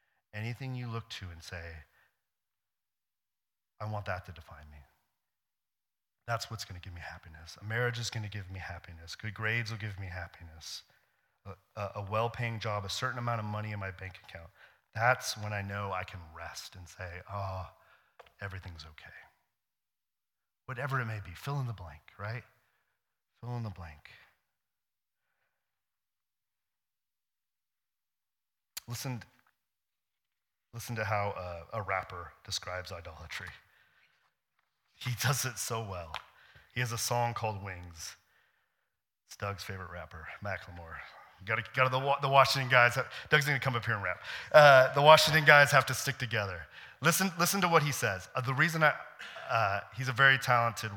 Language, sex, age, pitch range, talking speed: English, male, 40-59, 95-125 Hz, 160 wpm